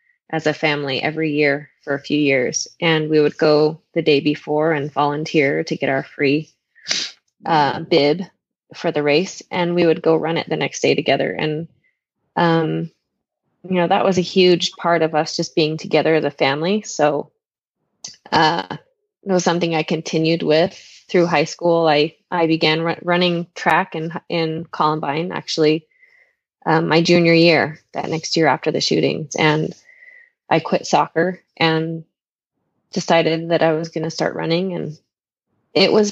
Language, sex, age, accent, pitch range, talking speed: English, female, 20-39, American, 155-190 Hz, 165 wpm